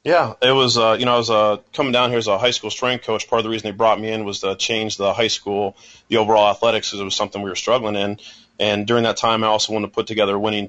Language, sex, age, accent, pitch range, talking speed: English, male, 30-49, American, 105-115 Hz, 310 wpm